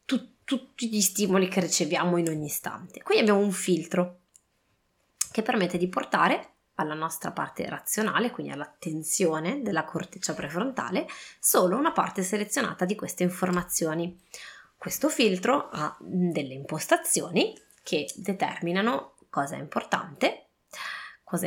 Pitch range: 170-205 Hz